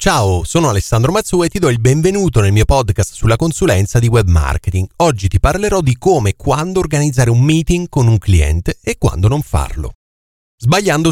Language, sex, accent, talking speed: Italian, male, native, 190 wpm